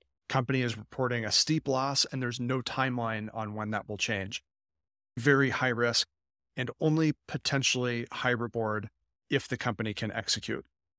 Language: English